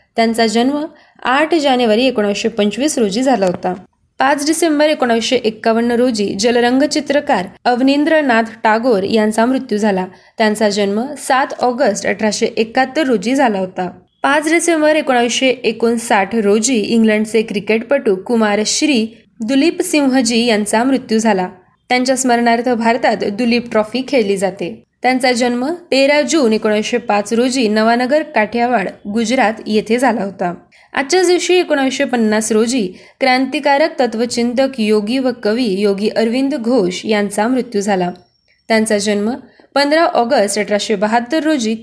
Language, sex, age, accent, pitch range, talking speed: Marathi, female, 20-39, native, 215-265 Hz, 120 wpm